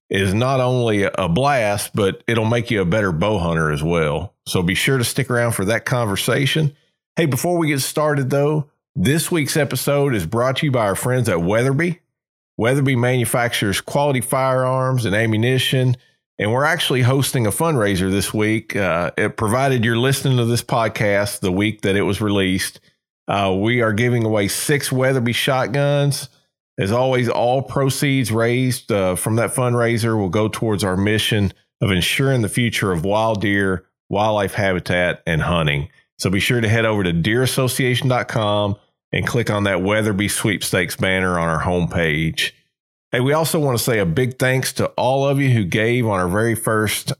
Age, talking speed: 40-59, 180 wpm